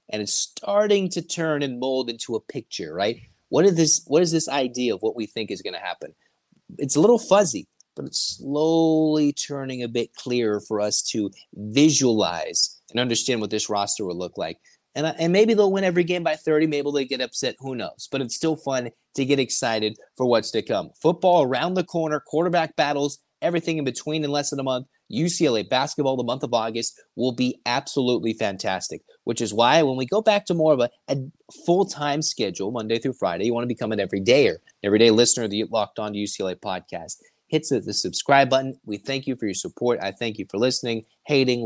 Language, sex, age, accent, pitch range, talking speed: English, male, 30-49, American, 110-150 Hz, 210 wpm